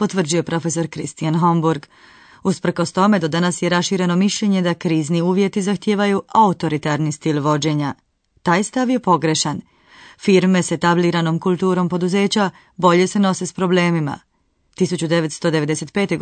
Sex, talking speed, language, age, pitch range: female, 120 wpm, Croatian, 30-49, 160-200 Hz